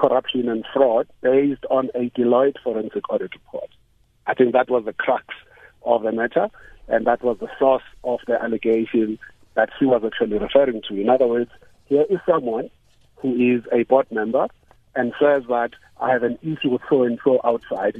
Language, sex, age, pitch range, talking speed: English, male, 60-79, 120-140 Hz, 180 wpm